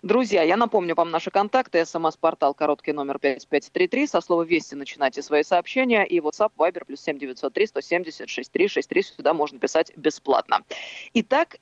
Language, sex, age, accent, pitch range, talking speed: Russian, female, 20-39, native, 155-215 Hz, 130 wpm